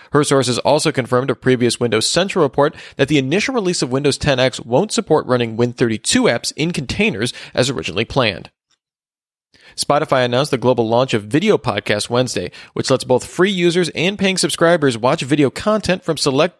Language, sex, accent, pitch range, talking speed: English, male, American, 120-165 Hz, 175 wpm